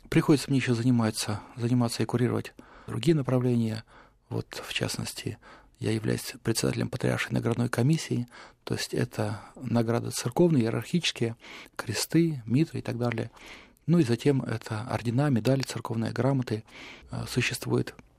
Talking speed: 125 wpm